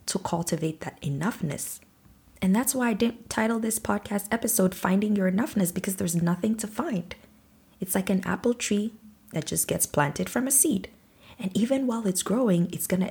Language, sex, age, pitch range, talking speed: English, female, 20-39, 165-210 Hz, 190 wpm